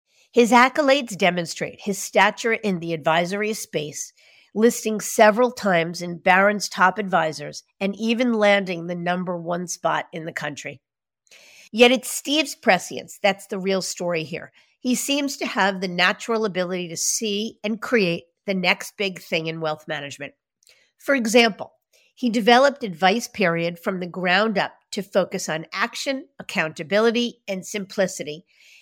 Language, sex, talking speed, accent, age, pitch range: English, female, 145 wpm, American, 50-69, 175-230 Hz